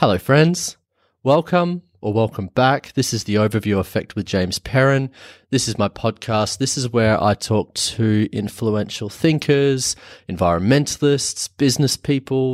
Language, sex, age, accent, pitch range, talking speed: English, male, 30-49, Australian, 100-125 Hz, 140 wpm